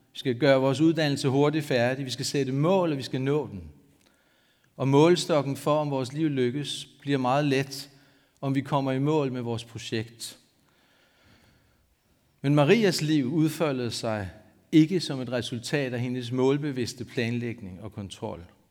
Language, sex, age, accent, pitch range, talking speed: Danish, male, 60-79, native, 115-145 Hz, 155 wpm